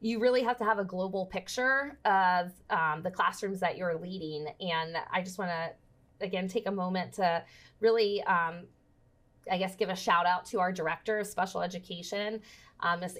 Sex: female